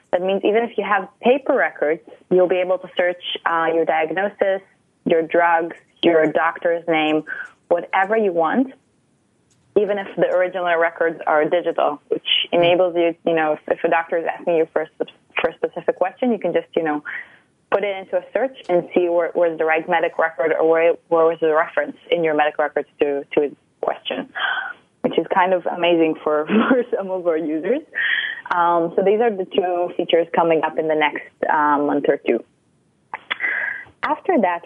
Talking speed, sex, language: 190 wpm, female, English